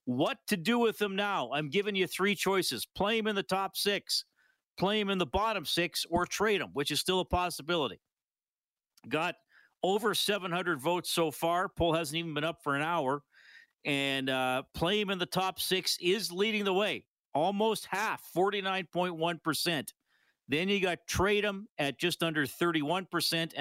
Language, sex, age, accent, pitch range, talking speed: English, male, 50-69, American, 140-185 Hz, 175 wpm